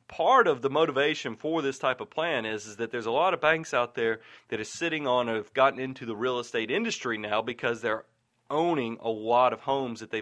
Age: 30-49